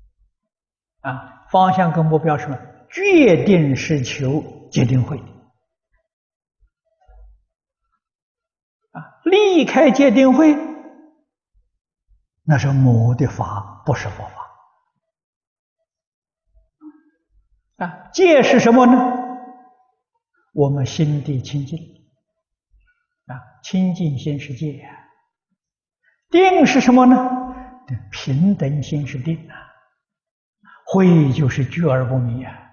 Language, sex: Chinese, male